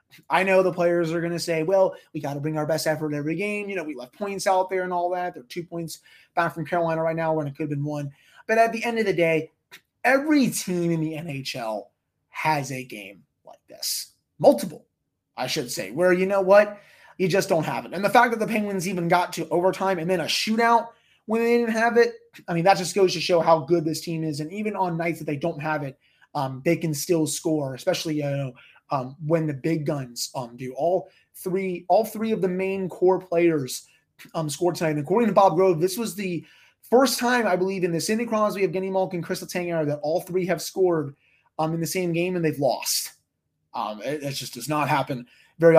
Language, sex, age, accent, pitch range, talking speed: English, male, 20-39, American, 150-185 Hz, 235 wpm